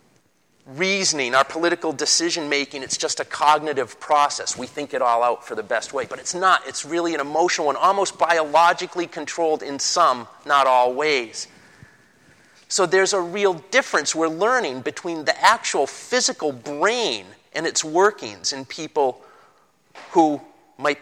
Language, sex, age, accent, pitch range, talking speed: English, male, 40-59, American, 135-175 Hz, 155 wpm